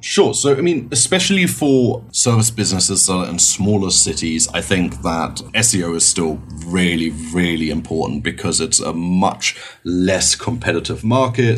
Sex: male